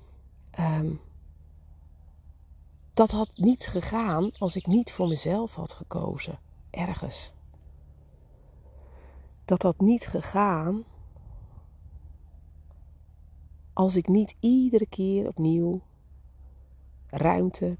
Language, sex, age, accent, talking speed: Dutch, female, 40-59, Dutch, 80 wpm